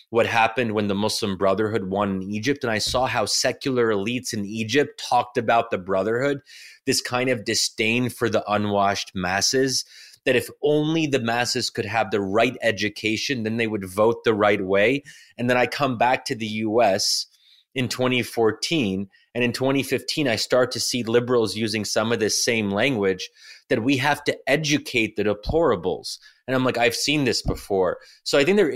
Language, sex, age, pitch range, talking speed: English, male, 30-49, 105-130 Hz, 185 wpm